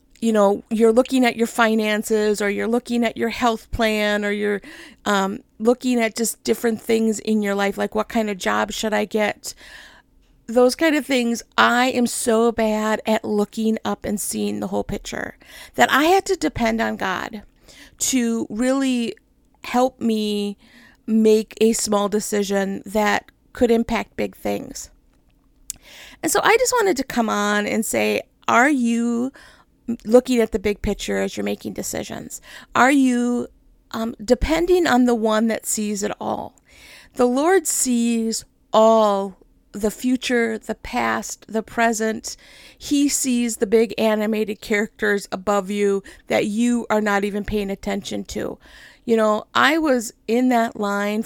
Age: 50-69